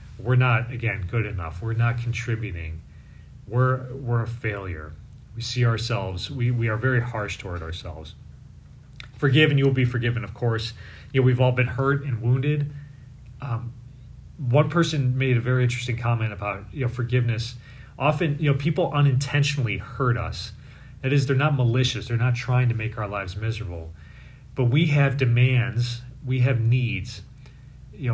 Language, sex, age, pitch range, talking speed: English, male, 30-49, 105-130 Hz, 165 wpm